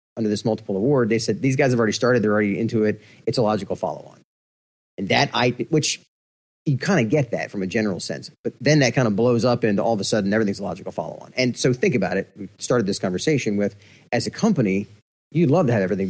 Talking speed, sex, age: 245 wpm, male, 30-49